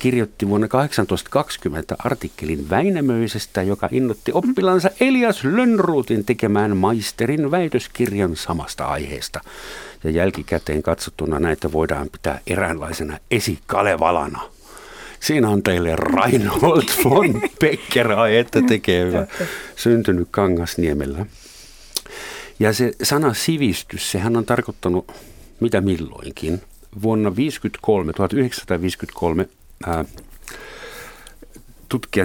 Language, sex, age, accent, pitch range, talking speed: Finnish, male, 60-79, native, 85-115 Hz, 85 wpm